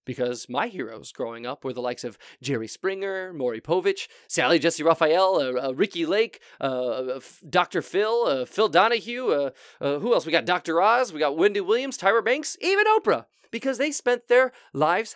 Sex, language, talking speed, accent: male, English, 190 wpm, American